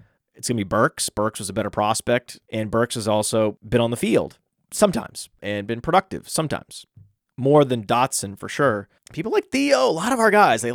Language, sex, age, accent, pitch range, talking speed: English, male, 30-49, American, 110-155 Hz, 200 wpm